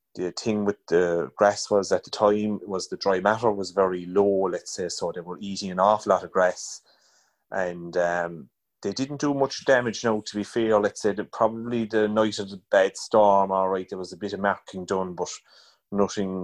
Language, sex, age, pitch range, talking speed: English, male, 30-49, 95-110 Hz, 210 wpm